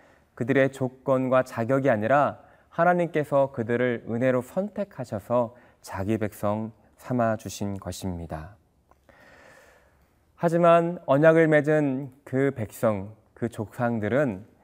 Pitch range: 105-135 Hz